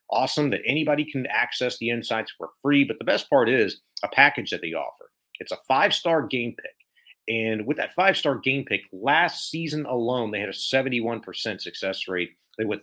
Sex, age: male, 40-59